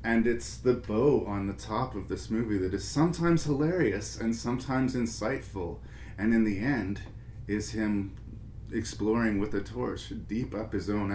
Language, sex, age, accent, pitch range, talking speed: English, male, 30-49, American, 100-115 Hz, 165 wpm